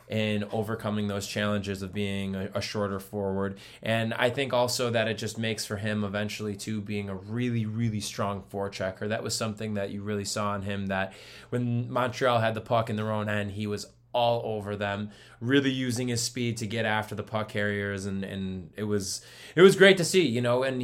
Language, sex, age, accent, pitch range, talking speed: English, male, 20-39, American, 100-115 Hz, 210 wpm